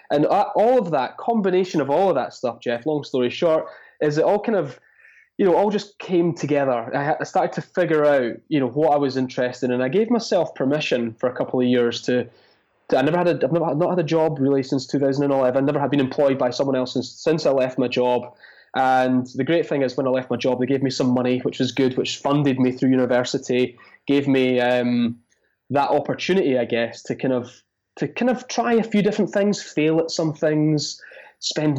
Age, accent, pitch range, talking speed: 20-39, British, 125-160 Hz, 230 wpm